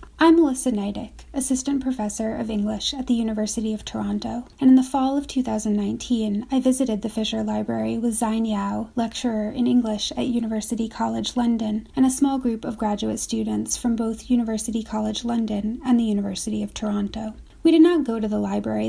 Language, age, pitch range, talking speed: English, 30-49, 210-245 Hz, 180 wpm